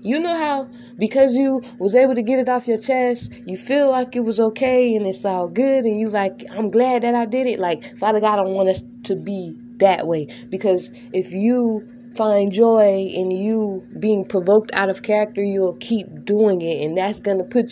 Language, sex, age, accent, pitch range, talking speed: English, female, 20-39, American, 185-240 Hz, 215 wpm